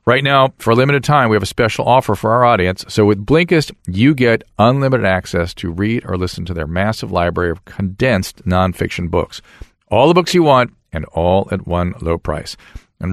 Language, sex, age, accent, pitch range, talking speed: English, male, 40-59, American, 95-125 Hz, 205 wpm